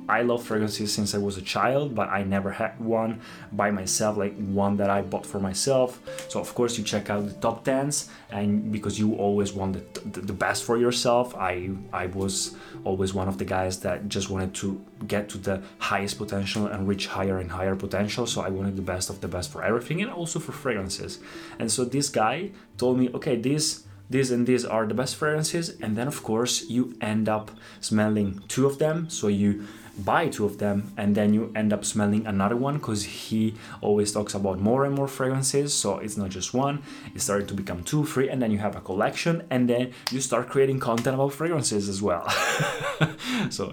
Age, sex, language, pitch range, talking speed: 20-39, male, Italian, 100-120 Hz, 210 wpm